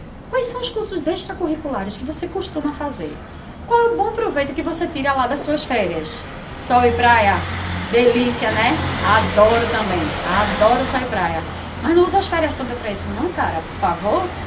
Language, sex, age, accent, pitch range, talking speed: Portuguese, female, 10-29, Brazilian, 265-360 Hz, 185 wpm